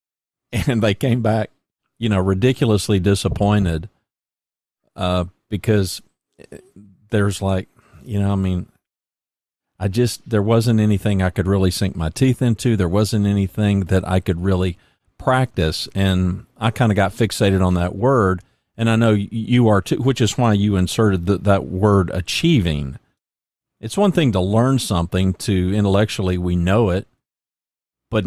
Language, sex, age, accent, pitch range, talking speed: English, male, 40-59, American, 90-115 Hz, 150 wpm